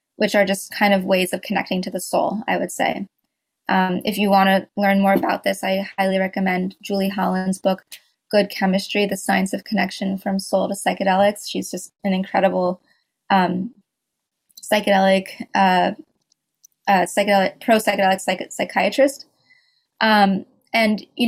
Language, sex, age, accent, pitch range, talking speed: English, female, 20-39, American, 190-215 Hz, 150 wpm